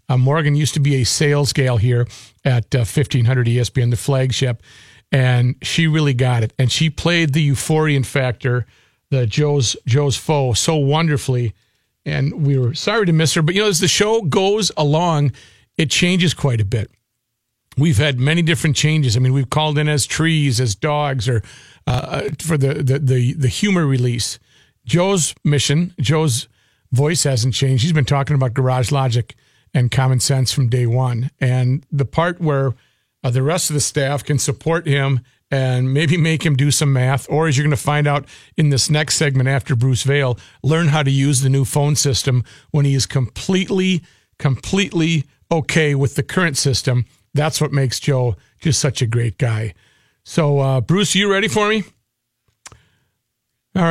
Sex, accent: male, American